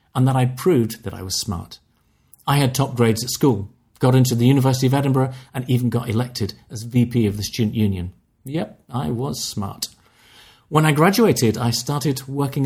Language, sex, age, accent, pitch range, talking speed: English, male, 40-59, British, 115-135 Hz, 190 wpm